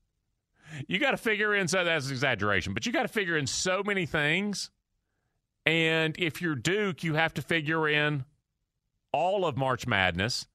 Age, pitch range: 40-59, 115-180 Hz